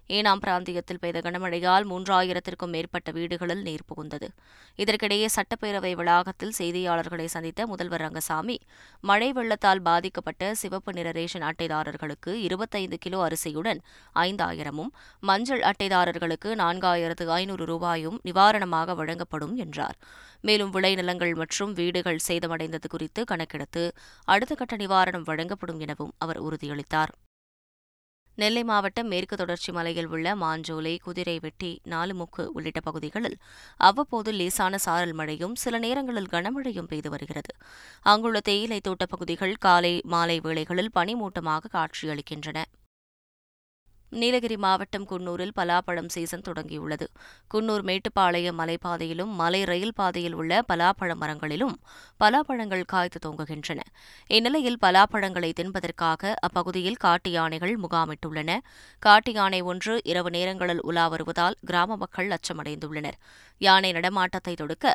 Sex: female